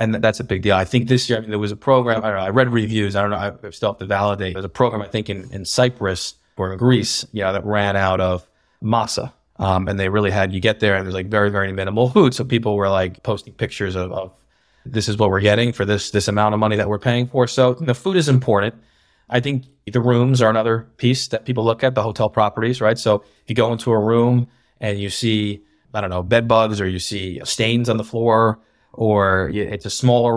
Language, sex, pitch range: English, male, 105-125 Hz